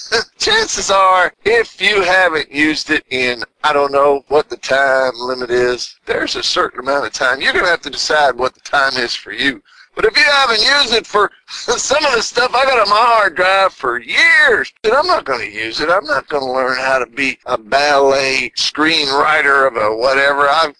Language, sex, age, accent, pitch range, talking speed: English, male, 50-69, American, 140-235 Hz, 215 wpm